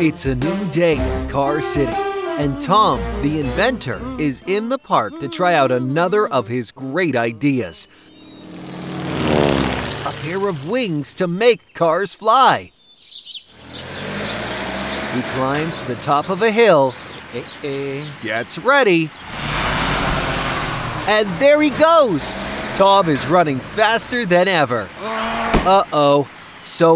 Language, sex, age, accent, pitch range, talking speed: English, male, 30-49, American, 135-215 Hz, 120 wpm